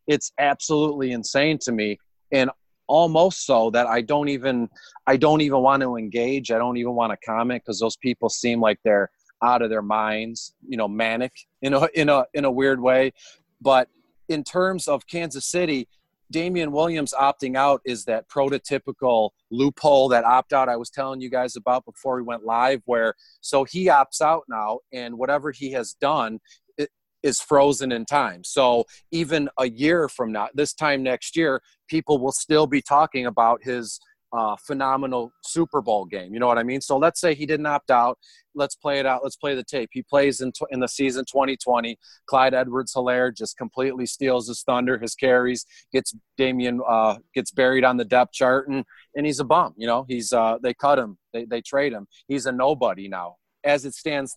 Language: English